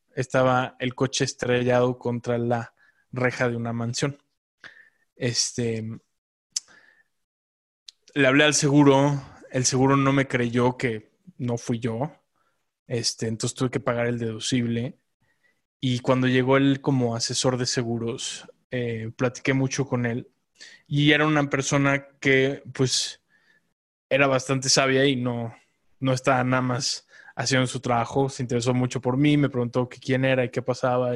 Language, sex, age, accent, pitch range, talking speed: Spanish, male, 20-39, Mexican, 125-140 Hz, 145 wpm